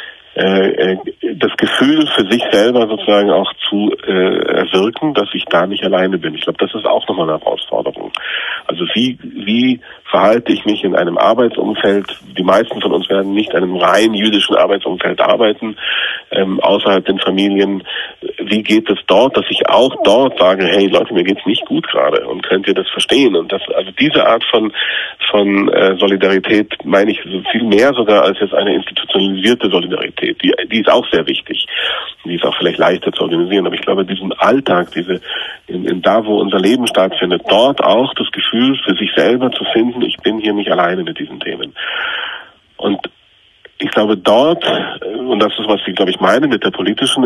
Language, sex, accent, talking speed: German, male, German, 190 wpm